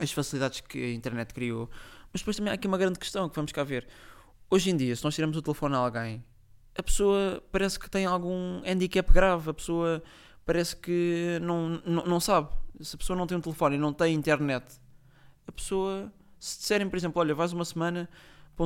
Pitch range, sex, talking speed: 150-190 Hz, male, 210 wpm